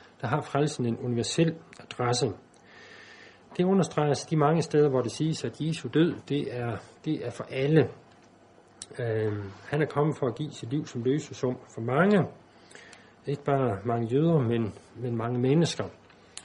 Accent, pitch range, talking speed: native, 115-145 Hz, 160 wpm